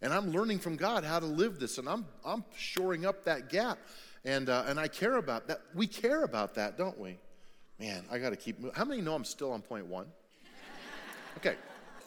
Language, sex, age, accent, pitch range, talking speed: English, male, 40-59, American, 120-175 Hz, 220 wpm